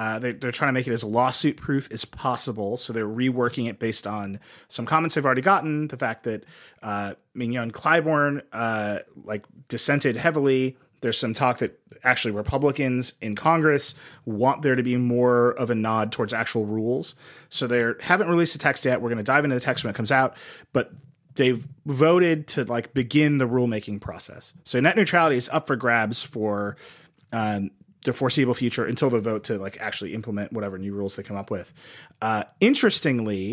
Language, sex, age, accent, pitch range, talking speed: English, male, 30-49, American, 115-145 Hz, 190 wpm